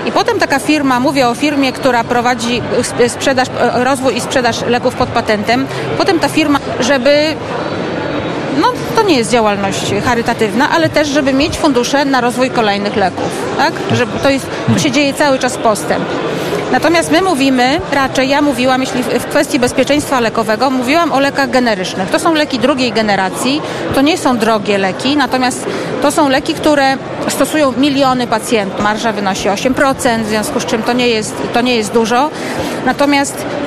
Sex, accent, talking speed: female, native, 160 wpm